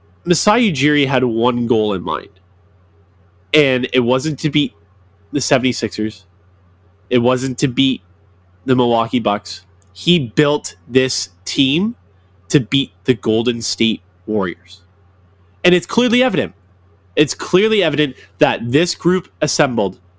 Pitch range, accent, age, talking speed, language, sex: 95-145 Hz, American, 20-39, 125 wpm, English, male